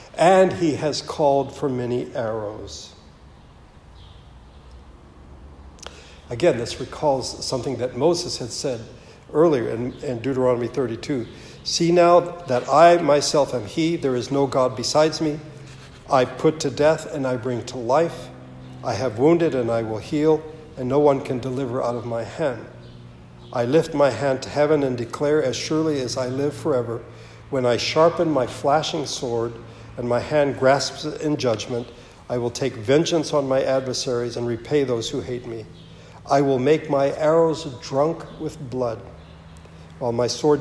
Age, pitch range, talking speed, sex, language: 60-79, 115-140 Hz, 160 wpm, male, English